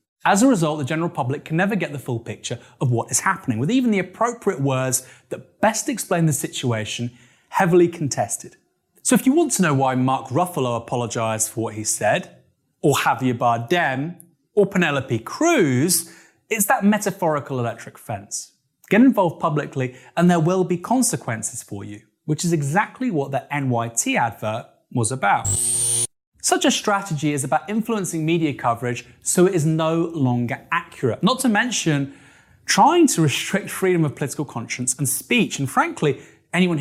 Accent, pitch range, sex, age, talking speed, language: British, 125-180 Hz, male, 30-49, 165 wpm, English